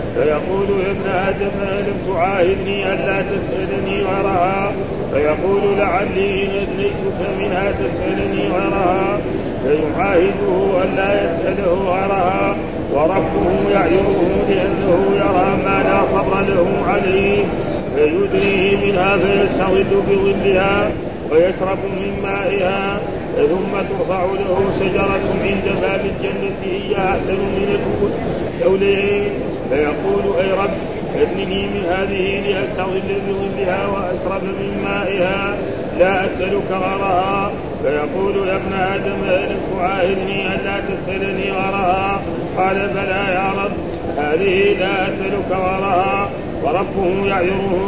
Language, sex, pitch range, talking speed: Arabic, male, 185-195 Hz, 100 wpm